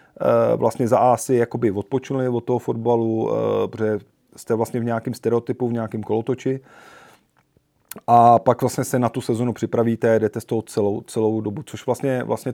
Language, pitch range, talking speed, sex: Czech, 115-125 Hz, 160 wpm, male